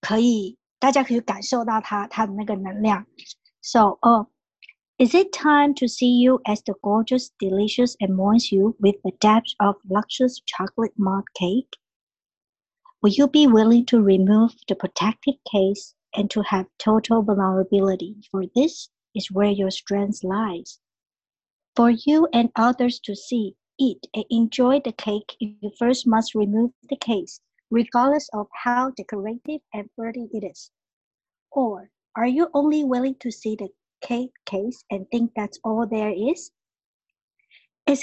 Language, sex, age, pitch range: Chinese, male, 60-79, 210-260 Hz